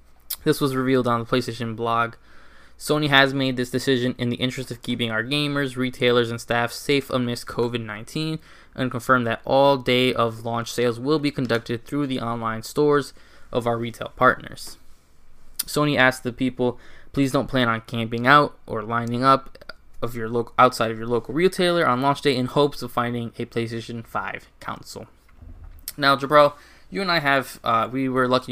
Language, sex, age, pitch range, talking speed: English, male, 10-29, 115-135 Hz, 175 wpm